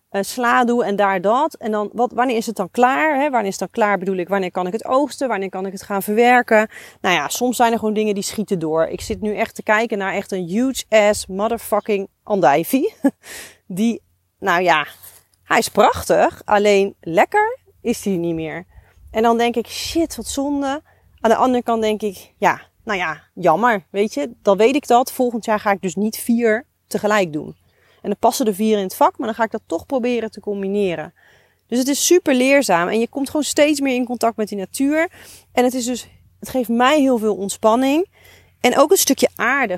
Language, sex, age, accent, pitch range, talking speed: Dutch, female, 30-49, Dutch, 195-245 Hz, 215 wpm